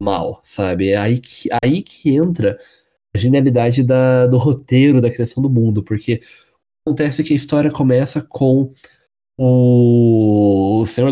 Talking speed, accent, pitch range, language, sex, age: 140 wpm, Brazilian, 115-150 Hz, Portuguese, male, 20-39